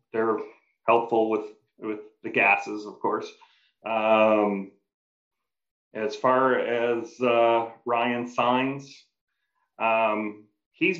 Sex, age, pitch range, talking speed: male, 40-59, 105-130 Hz, 95 wpm